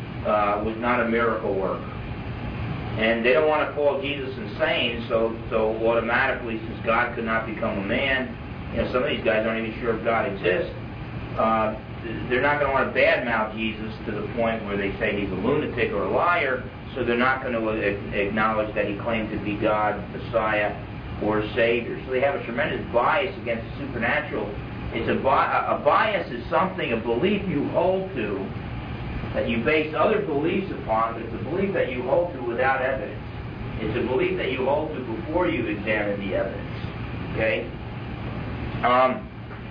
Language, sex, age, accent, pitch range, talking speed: English, male, 40-59, American, 110-135 Hz, 185 wpm